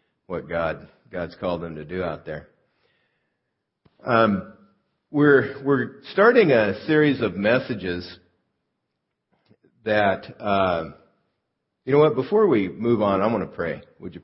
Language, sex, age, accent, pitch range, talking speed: English, male, 50-69, American, 80-95 Hz, 135 wpm